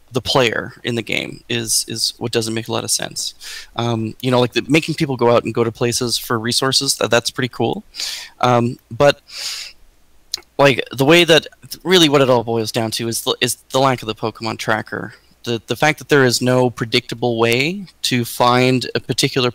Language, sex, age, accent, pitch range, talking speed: English, male, 20-39, American, 115-150 Hz, 210 wpm